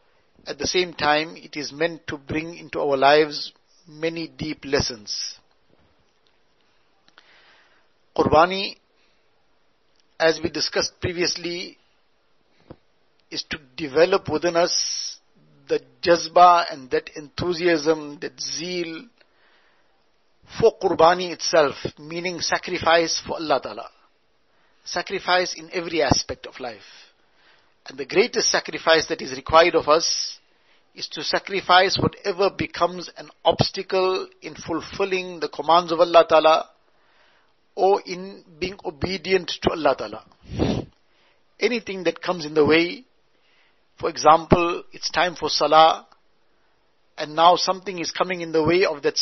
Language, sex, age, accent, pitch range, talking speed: English, male, 60-79, Indian, 155-180 Hz, 120 wpm